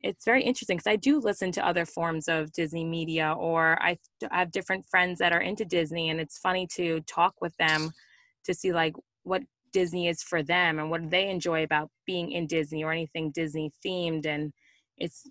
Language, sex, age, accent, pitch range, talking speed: English, female, 20-39, American, 160-190 Hz, 205 wpm